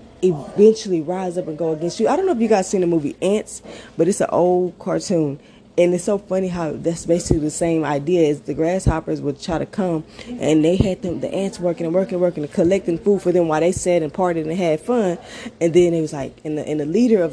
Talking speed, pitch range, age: 255 wpm, 160-205 Hz, 20-39